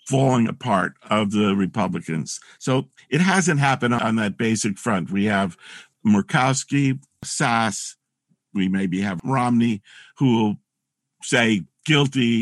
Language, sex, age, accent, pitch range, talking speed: English, male, 50-69, American, 105-145 Hz, 120 wpm